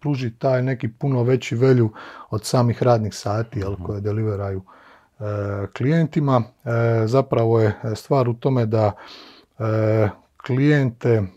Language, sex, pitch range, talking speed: Croatian, male, 110-135 Hz, 120 wpm